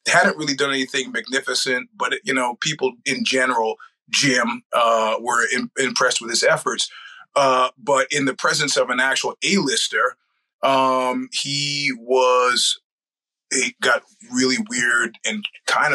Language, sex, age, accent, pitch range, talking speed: English, male, 30-49, American, 125-150 Hz, 135 wpm